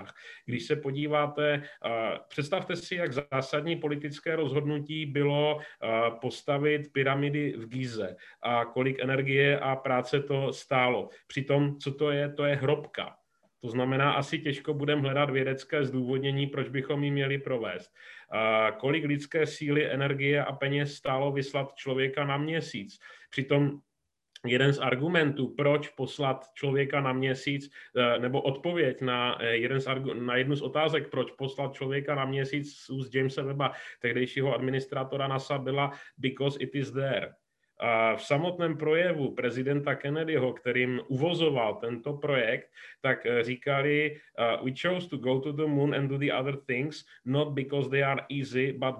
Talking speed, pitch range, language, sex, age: 140 wpm, 130-145 Hz, Czech, male, 30-49